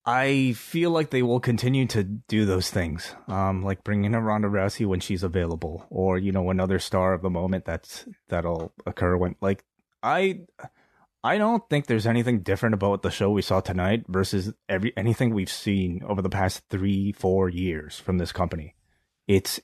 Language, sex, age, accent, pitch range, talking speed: English, male, 20-39, American, 90-110 Hz, 185 wpm